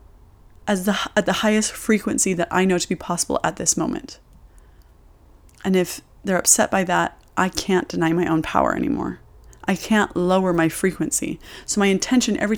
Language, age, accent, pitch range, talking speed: English, 20-39, American, 160-200 Hz, 165 wpm